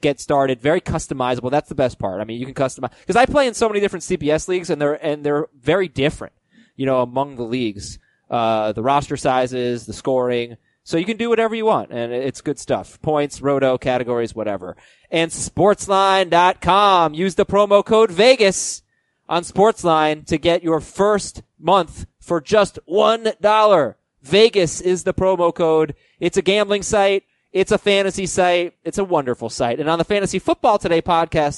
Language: English